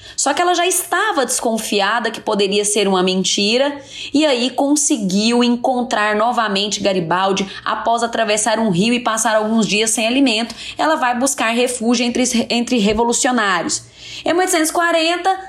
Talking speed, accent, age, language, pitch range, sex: 140 wpm, Brazilian, 10-29, Portuguese, 230-310 Hz, female